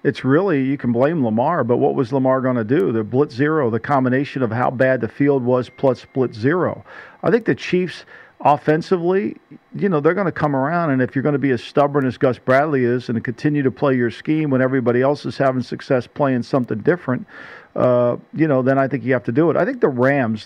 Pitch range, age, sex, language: 125-165 Hz, 50-69, male, English